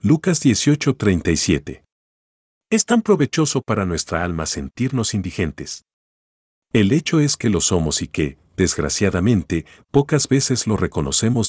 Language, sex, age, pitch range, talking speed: Spanish, male, 50-69, 75-115 Hz, 120 wpm